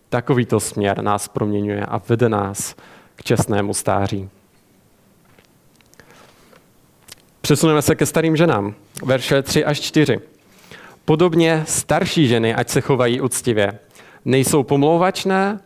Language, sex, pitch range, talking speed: Czech, male, 115-150 Hz, 105 wpm